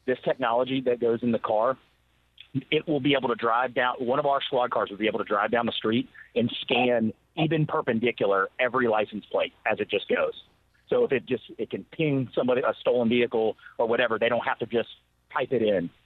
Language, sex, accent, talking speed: English, male, American, 220 wpm